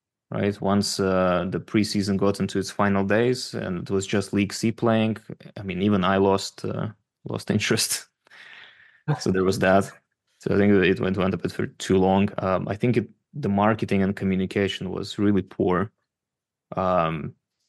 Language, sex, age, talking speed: English, male, 20-39, 175 wpm